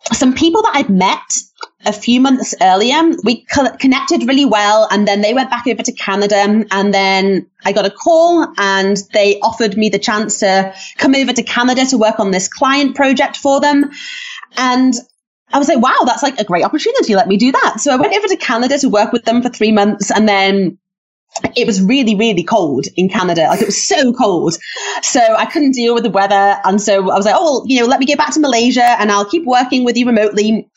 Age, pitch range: 30-49, 195-260 Hz